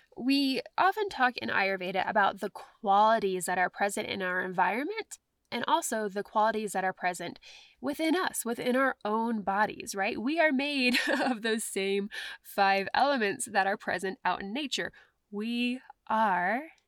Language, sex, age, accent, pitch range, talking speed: English, female, 10-29, American, 195-265 Hz, 155 wpm